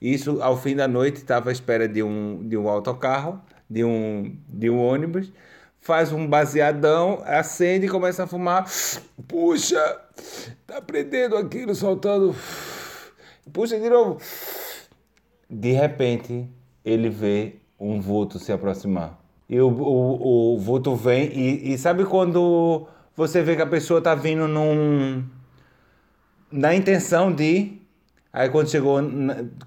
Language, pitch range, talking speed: Portuguese, 125-170 Hz, 135 wpm